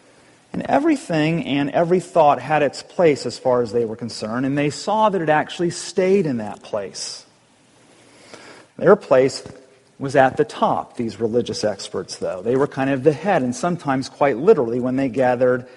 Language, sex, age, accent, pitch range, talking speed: English, male, 40-59, American, 125-175 Hz, 180 wpm